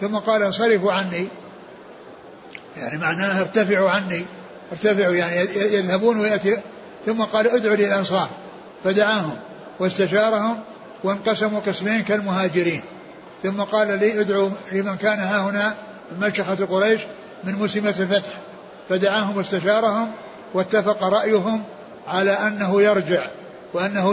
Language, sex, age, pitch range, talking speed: Arabic, male, 60-79, 190-215 Hz, 105 wpm